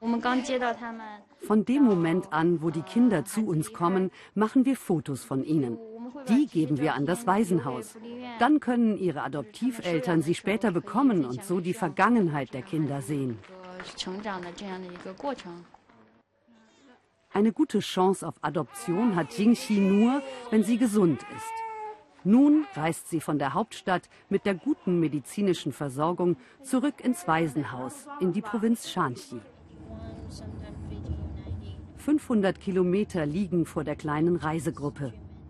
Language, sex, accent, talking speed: German, female, German, 120 wpm